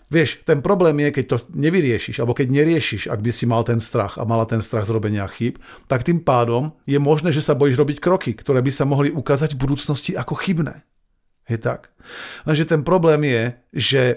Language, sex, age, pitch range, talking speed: Slovak, male, 40-59, 120-150 Hz, 205 wpm